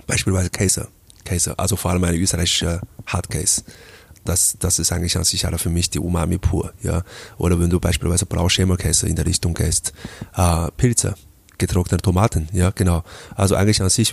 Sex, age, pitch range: male, 20-39, 90-100 Hz